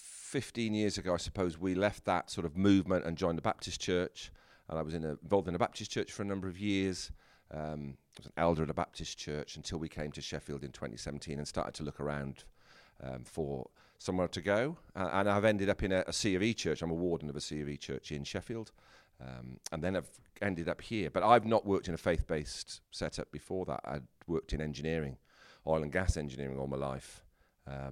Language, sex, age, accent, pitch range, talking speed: English, male, 40-59, British, 70-95 Hz, 230 wpm